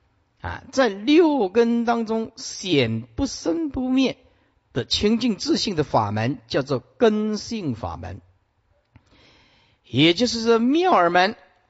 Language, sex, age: Chinese, male, 50-69